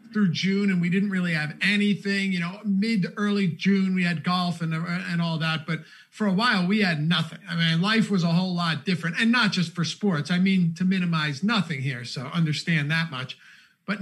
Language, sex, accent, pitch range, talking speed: English, male, American, 175-215 Hz, 220 wpm